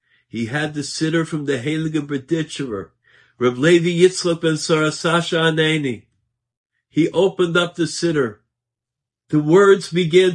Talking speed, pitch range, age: 120 wpm, 120-170 Hz, 50-69